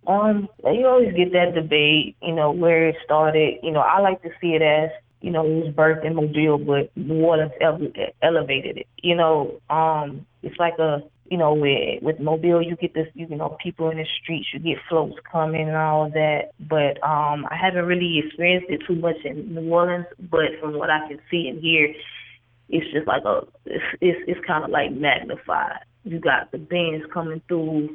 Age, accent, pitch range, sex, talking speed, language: 20-39, American, 150-170 Hz, female, 205 wpm, English